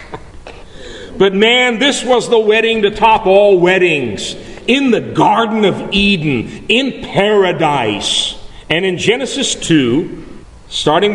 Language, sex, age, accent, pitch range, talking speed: English, male, 50-69, American, 150-210 Hz, 120 wpm